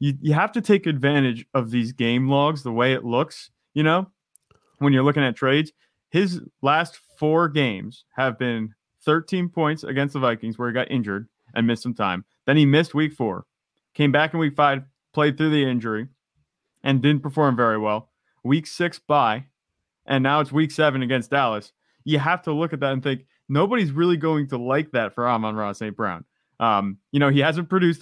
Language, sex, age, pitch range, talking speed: English, male, 30-49, 120-150 Hz, 200 wpm